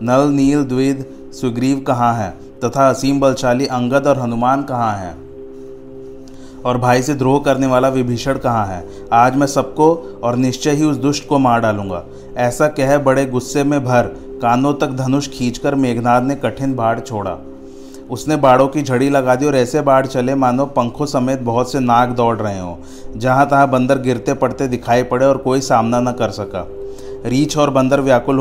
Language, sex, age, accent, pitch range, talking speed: Hindi, male, 30-49, native, 120-140 Hz, 180 wpm